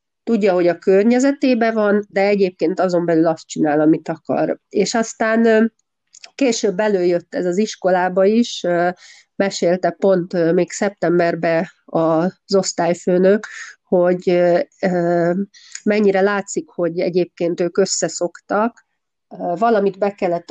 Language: Hungarian